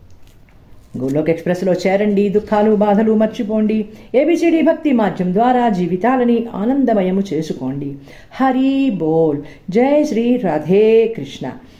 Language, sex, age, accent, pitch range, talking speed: Telugu, female, 50-69, native, 155-230 Hz, 95 wpm